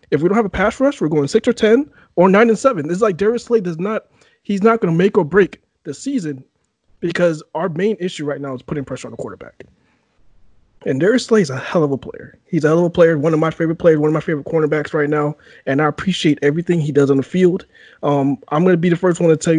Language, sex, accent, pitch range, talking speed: English, male, American, 145-190 Hz, 270 wpm